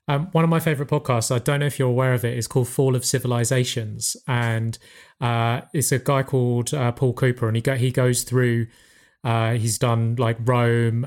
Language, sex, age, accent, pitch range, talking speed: English, male, 30-49, British, 120-150 Hz, 210 wpm